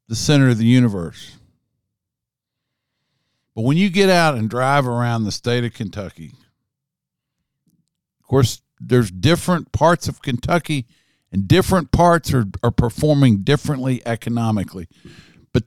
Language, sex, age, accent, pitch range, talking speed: English, male, 50-69, American, 100-140 Hz, 125 wpm